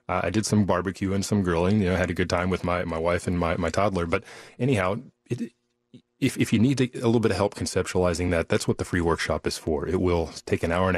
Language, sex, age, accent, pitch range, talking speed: English, male, 30-49, American, 85-110 Hz, 260 wpm